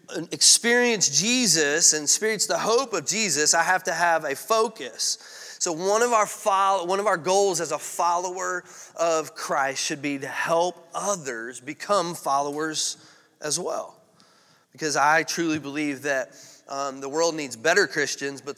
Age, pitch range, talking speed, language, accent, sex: 30-49, 150-205 Hz, 160 wpm, English, American, male